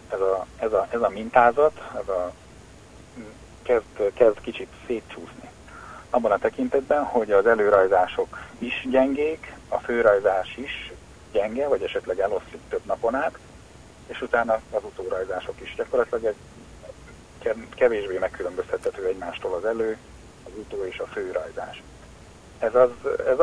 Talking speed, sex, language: 130 wpm, male, Hungarian